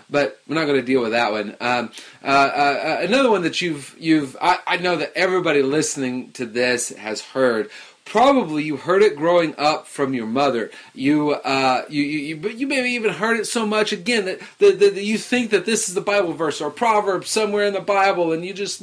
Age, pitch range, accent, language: 30-49, 145-200 Hz, American, English